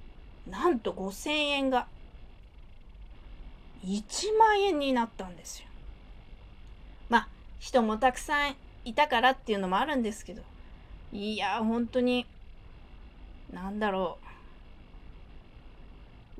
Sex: female